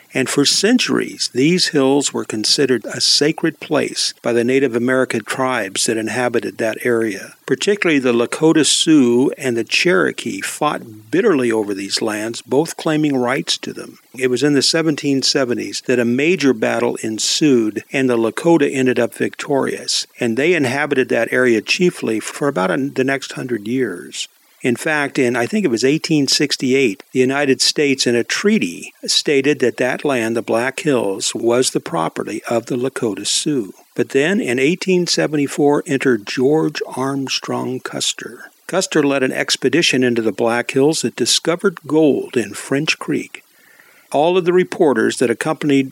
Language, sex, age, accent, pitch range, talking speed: English, male, 50-69, American, 120-150 Hz, 155 wpm